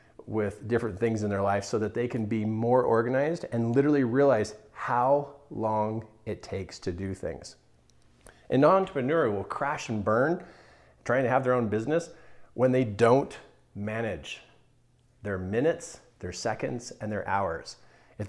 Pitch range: 105-150 Hz